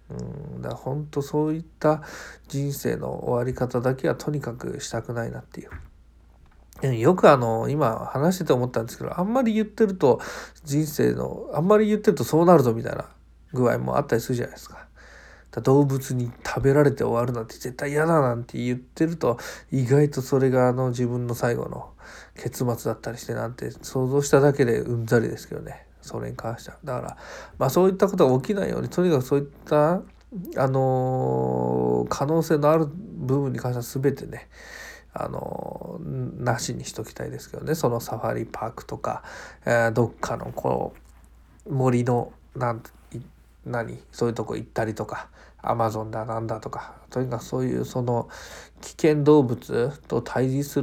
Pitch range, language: 115-150 Hz, Japanese